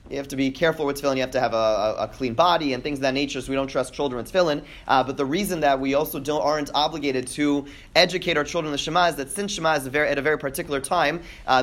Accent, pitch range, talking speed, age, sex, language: American, 130-160 Hz, 295 wpm, 30-49, male, English